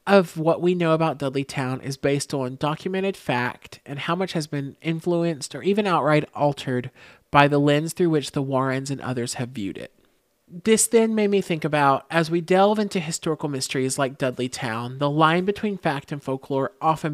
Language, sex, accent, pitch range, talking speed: English, male, American, 135-165 Hz, 195 wpm